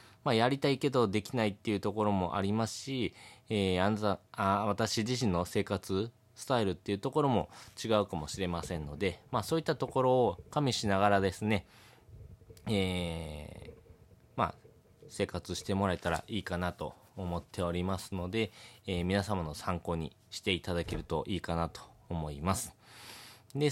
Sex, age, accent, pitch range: male, 20-39, native, 85-110 Hz